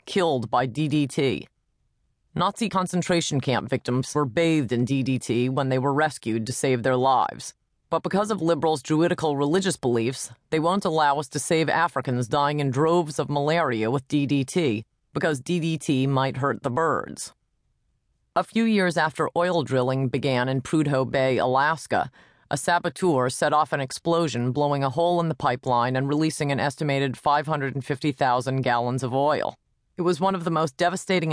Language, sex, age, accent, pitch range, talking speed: English, female, 30-49, American, 135-170 Hz, 160 wpm